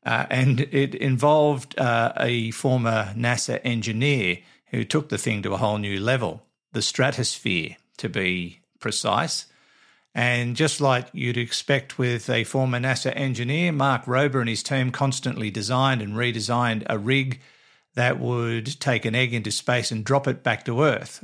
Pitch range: 110-135 Hz